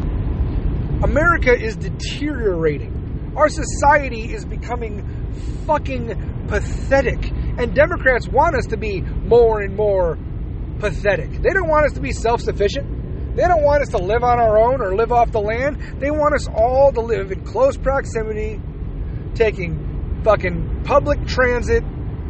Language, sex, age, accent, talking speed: English, male, 30-49, American, 145 wpm